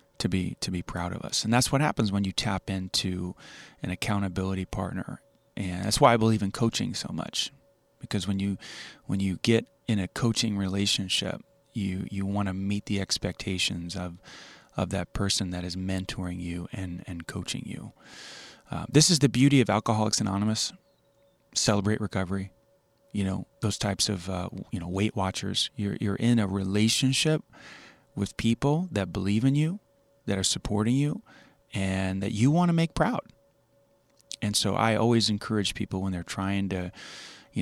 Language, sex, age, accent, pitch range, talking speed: English, male, 30-49, American, 95-115 Hz, 175 wpm